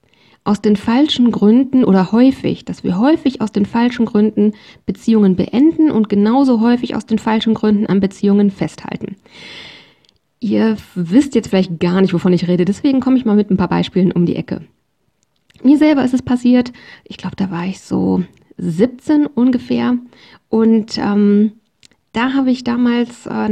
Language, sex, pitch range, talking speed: German, female, 190-235 Hz, 165 wpm